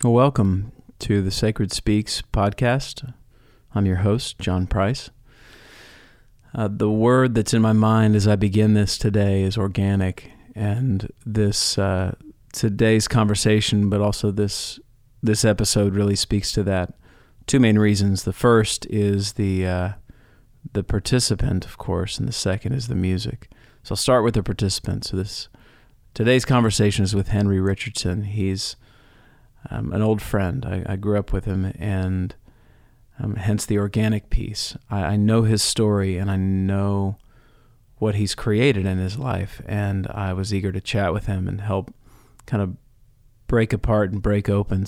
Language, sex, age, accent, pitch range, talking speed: English, male, 40-59, American, 100-115 Hz, 160 wpm